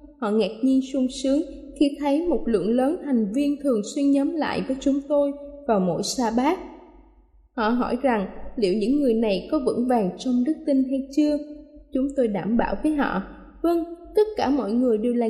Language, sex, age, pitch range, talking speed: Vietnamese, female, 20-39, 235-285 Hz, 200 wpm